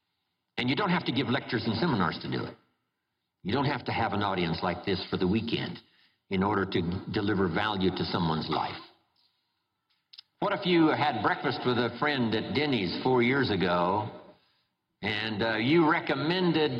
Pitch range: 115-155 Hz